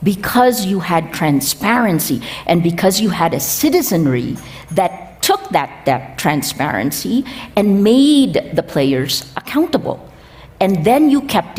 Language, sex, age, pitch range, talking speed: English, female, 50-69, 155-240 Hz, 125 wpm